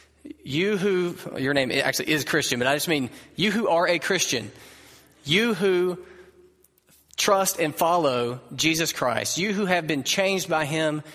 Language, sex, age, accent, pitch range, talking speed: English, male, 30-49, American, 115-175 Hz, 160 wpm